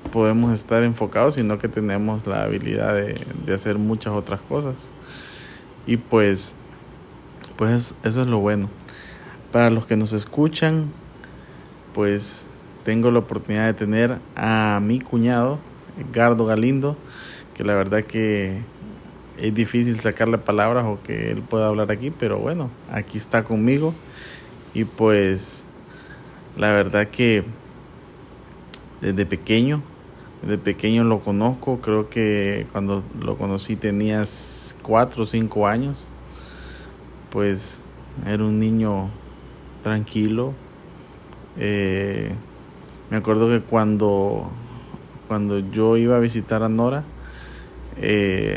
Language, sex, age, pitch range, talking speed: Spanish, male, 20-39, 105-120 Hz, 115 wpm